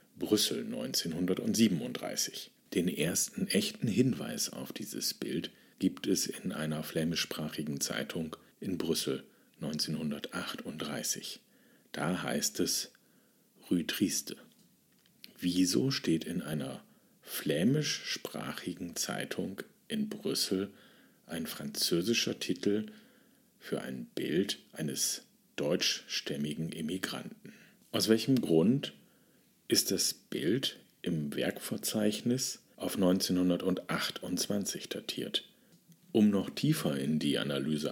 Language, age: German, 50-69